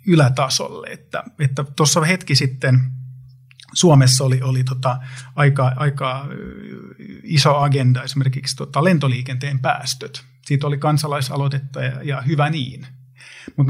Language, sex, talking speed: Finnish, male, 115 wpm